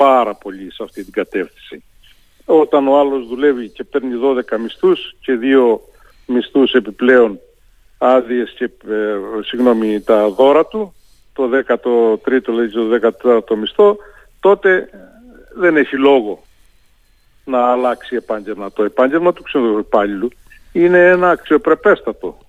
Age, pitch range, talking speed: 50-69, 115-140 Hz, 125 wpm